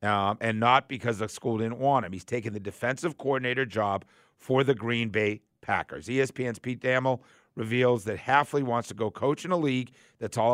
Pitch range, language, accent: 105-130 Hz, English, American